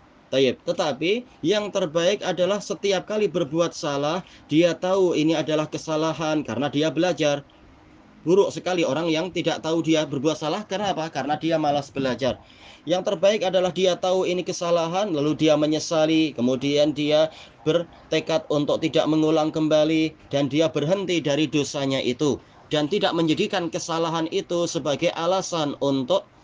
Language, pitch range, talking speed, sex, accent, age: Indonesian, 145-165 Hz, 140 wpm, male, native, 30-49